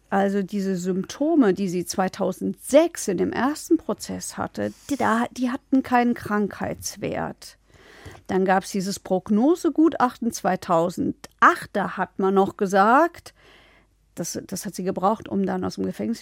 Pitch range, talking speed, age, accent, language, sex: 195-240 Hz, 135 wpm, 50-69, German, German, female